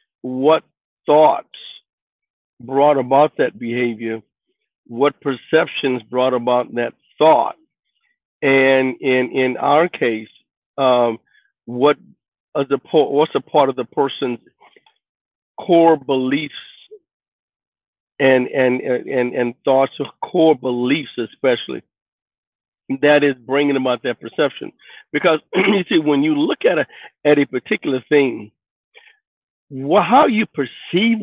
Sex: male